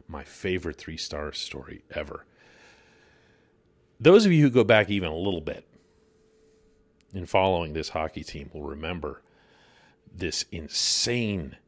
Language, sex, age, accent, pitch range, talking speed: English, male, 40-59, American, 80-115 Hz, 125 wpm